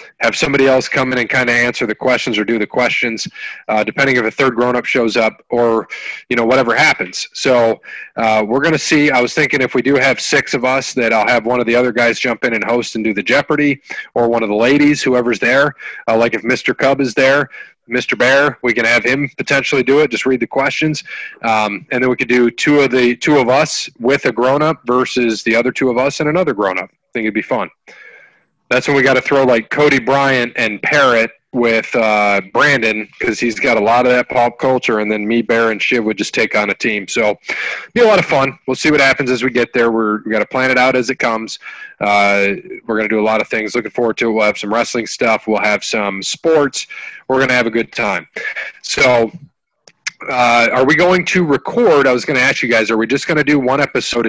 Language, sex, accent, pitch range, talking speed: English, male, American, 115-135 Hz, 250 wpm